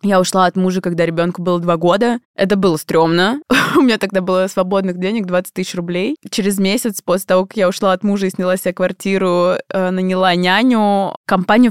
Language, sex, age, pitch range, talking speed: Russian, female, 20-39, 185-220 Hz, 190 wpm